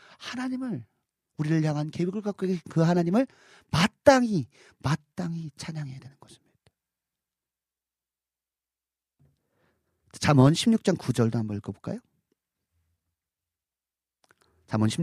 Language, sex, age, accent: Korean, male, 40-59, native